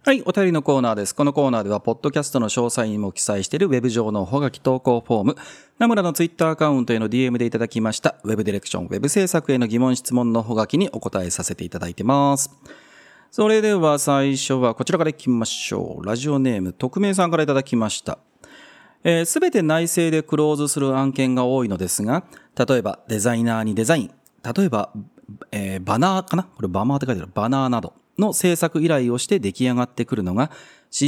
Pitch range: 115-155 Hz